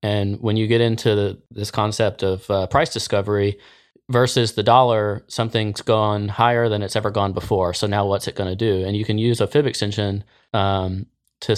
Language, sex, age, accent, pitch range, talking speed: English, male, 20-39, American, 100-110 Hz, 195 wpm